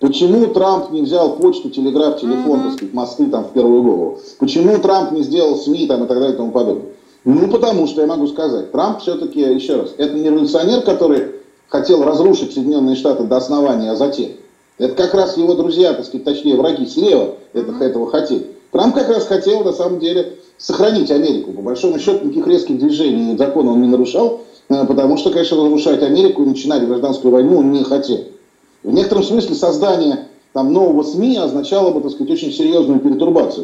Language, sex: Russian, male